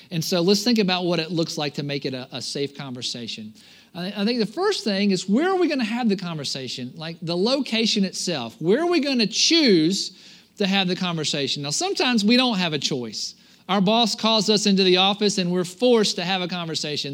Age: 50-69